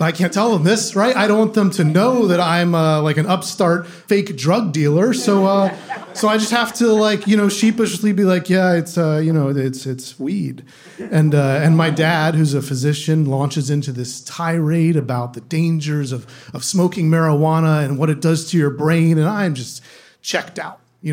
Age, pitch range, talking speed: 30-49, 155-205 Hz, 210 wpm